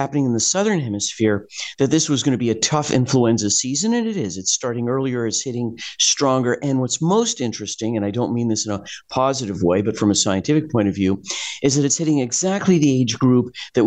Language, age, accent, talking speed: English, 50-69, American, 230 wpm